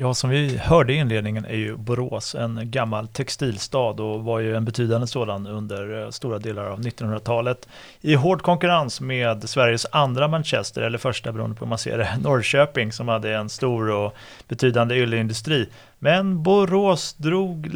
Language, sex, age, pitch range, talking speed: Swedish, male, 30-49, 115-135 Hz, 165 wpm